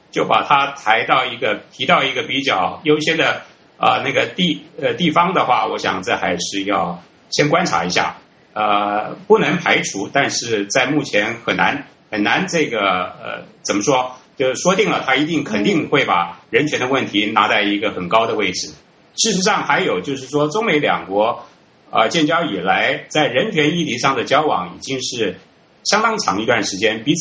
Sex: male